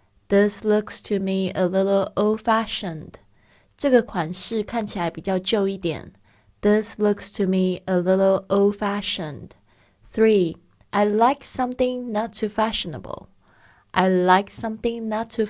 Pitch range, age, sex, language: 180-220 Hz, 20-39, female, Chinese